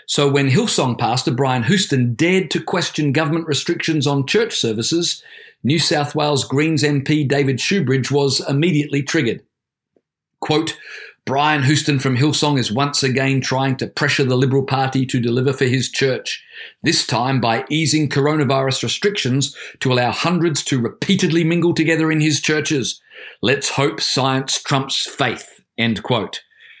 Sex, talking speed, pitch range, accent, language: male, 150 wpm, 130-160 Hz, Australian, English